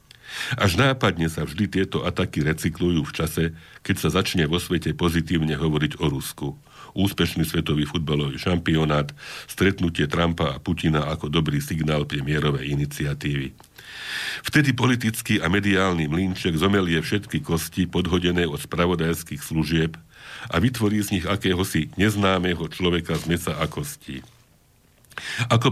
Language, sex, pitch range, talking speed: Slovak, male, 80-100 Hz, 130 wpm